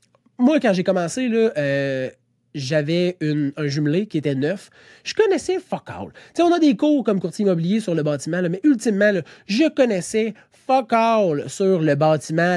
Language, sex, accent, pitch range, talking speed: French, male, Canadian, 150-205 Hz, 185 wpm